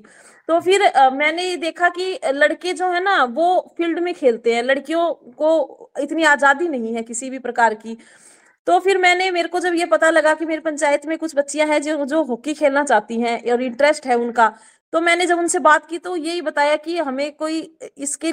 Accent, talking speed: native, 120 wpm